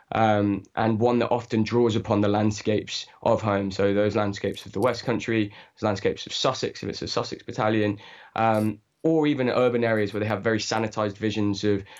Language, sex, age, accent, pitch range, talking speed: English, male, 20-39, British, 100-115 Hz, 195 wpm